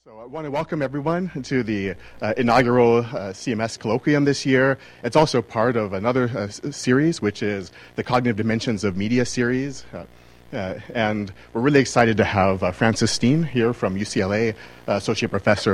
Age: 30-49